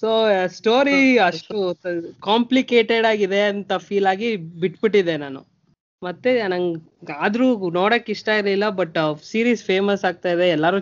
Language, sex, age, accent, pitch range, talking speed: Kannada, female, 20-39, native, 170-220 Hz, 120 wpm